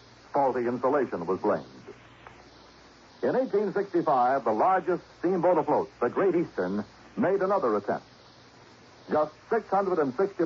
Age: 60-79